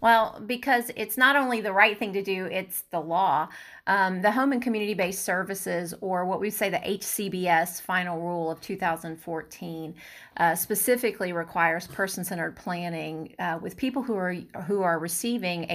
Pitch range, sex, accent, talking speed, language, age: 170-205 Hz, female, American, 160 wpm, English, 30-49